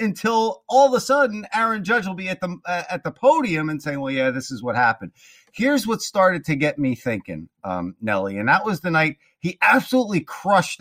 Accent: American